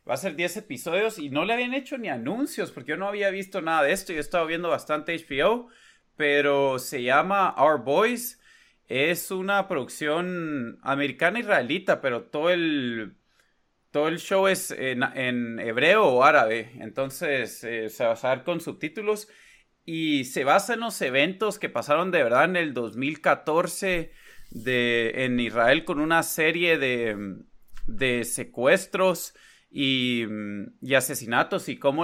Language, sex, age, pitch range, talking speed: Spanish, male, 30-49, 130-190 Hz, 155 wpm